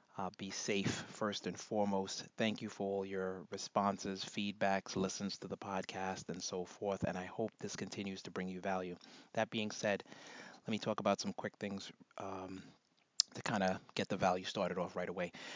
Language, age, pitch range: English, 30-49, 100-110 Hz